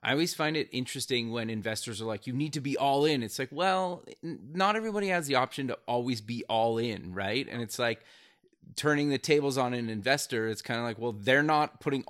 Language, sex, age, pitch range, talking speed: English, male, 20-39, 115-140 Hz, 230 wpm